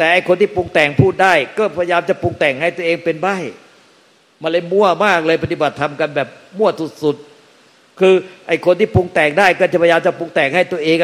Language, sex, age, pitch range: Thai, male, 60-79, 145-175 Hz